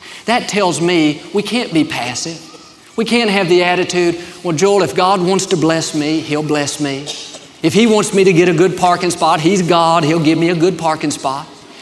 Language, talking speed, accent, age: English, 215 wpm, American, 40-59